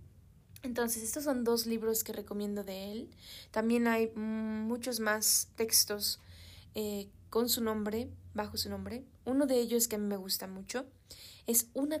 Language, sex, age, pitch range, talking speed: Spanish, female, 20-39, 205-230 Hz, 160 wpm